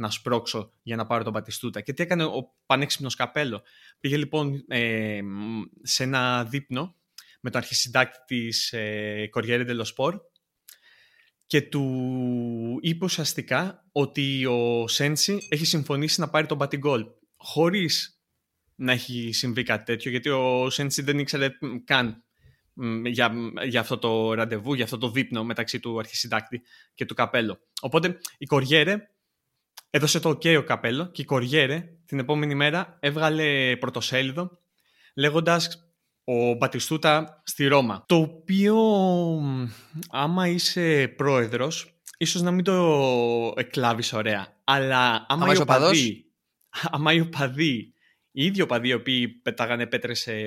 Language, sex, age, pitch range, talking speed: Greek, male, 20-39, 120-155 Hz, 125 wpm